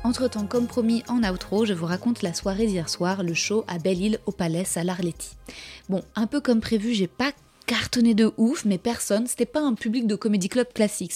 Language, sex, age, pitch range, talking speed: French, female, 20-39, 195-240 Hz, 220 wpm